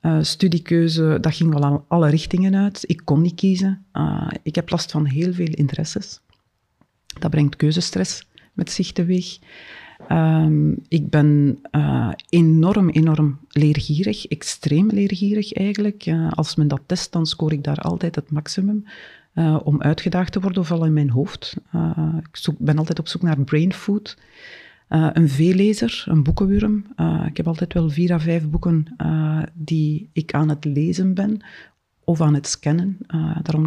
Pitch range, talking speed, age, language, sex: 155-185 Hz, 170 wpm, 40-59, Dutch, female